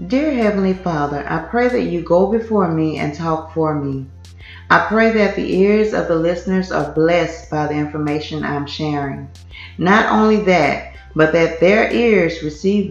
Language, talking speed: English, 175 wpm